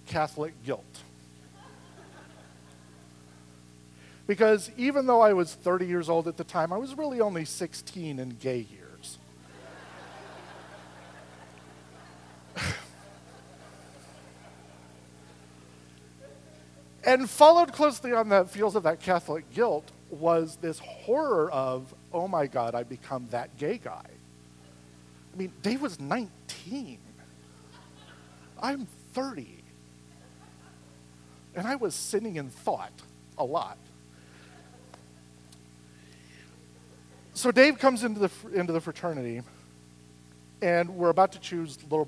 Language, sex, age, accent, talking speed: English, male, 50-69, American, 105 wpm